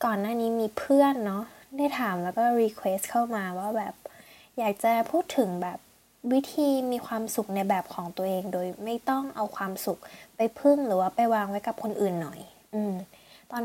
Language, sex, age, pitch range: Thai, female, 10-29, 190-230 Hz